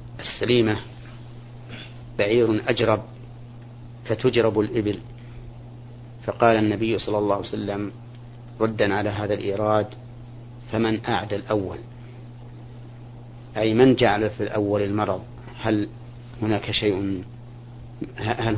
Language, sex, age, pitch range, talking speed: Arabic, male, 40-59, 110-120 Hz, 90 wpm